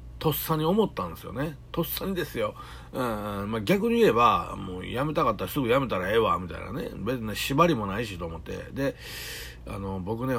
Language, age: Japanese, 60-79